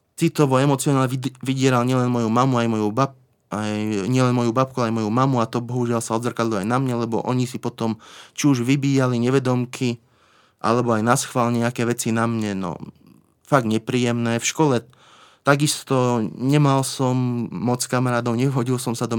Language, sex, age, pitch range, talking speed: Slovak, male, 30-49, 115-130 Hz, 165 wpm